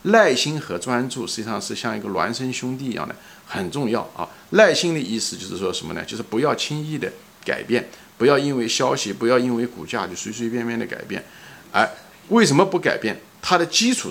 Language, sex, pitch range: Chinese, male, 120-180 Hz